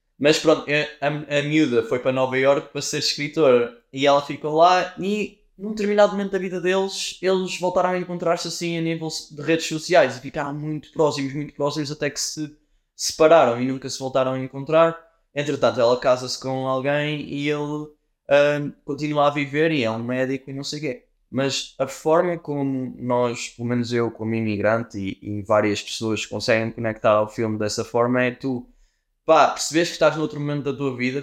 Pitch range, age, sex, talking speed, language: 125-155 Hz, 20-39, male, 195 wpm, Portuguese